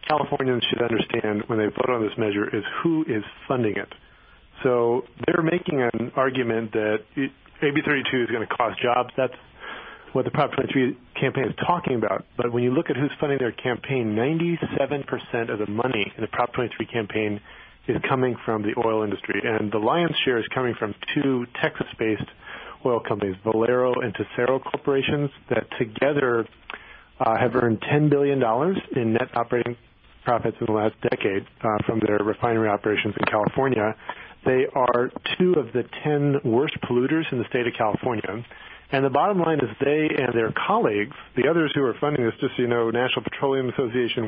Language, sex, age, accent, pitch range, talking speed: English, male, 40-59, American, 115-140 Hz, 180 wpm